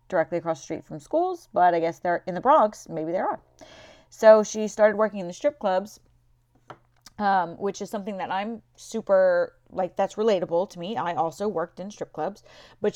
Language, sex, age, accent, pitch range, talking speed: English, female, 30-49, American, 175-220 Hz, 200 wpm